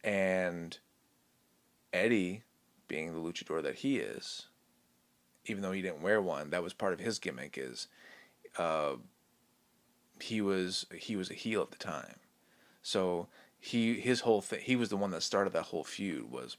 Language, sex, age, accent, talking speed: English, male, 30-49, American, 165 wpm